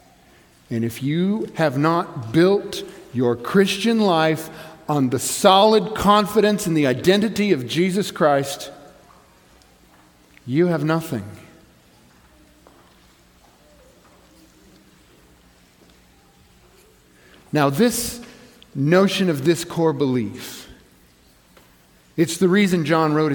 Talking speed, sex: 85 wpm, male